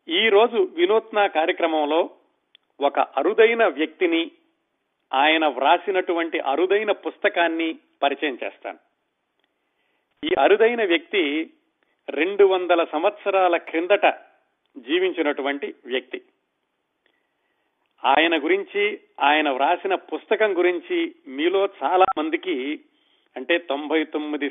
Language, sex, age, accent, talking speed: Telugu, male, 40-59, native, 75 wpm